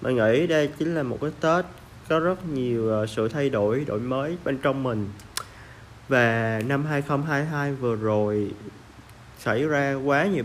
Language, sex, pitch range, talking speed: Vietnamese, male, 115-145 Hz, 160 wpm